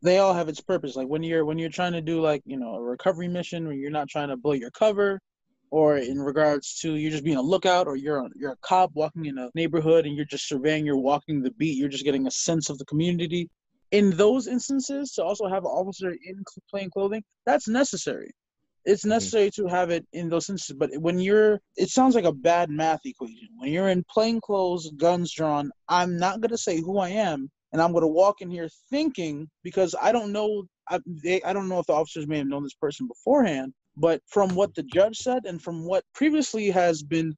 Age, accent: 20-39, American